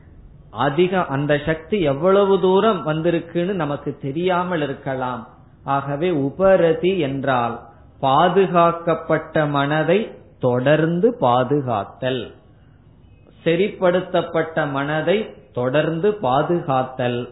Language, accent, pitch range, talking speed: Tamil, native, 130-170 Hz, 70 wpm